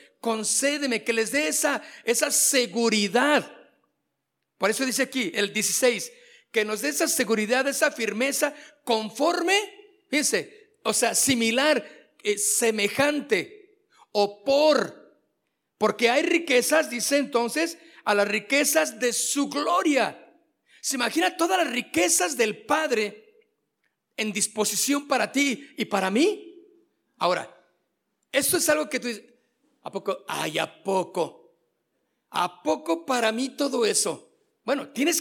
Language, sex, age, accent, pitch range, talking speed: Spanish, male, 50-69, Mexican, 220-310 Hz, 125 wpm